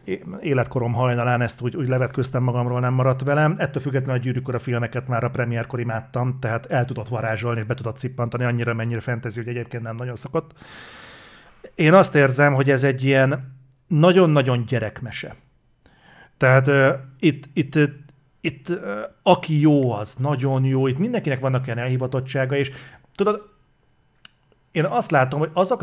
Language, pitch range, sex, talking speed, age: Hungarian, 120-140 Hz, male, 150 wpm, 40-59